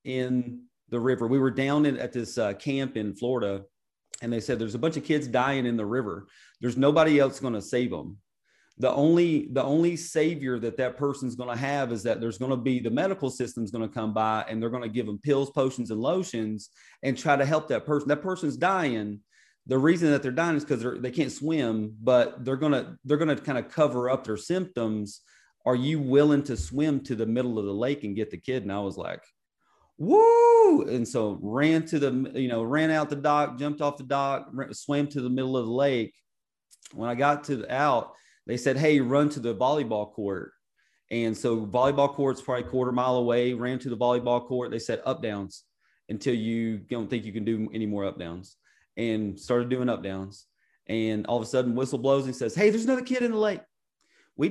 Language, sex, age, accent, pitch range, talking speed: English, male, 40-59, American, 115-145 Hz, 225 wpm